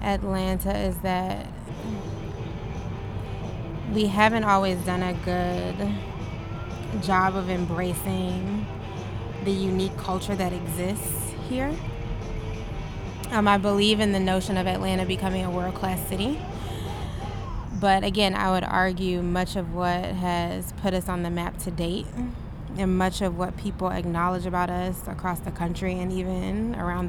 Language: English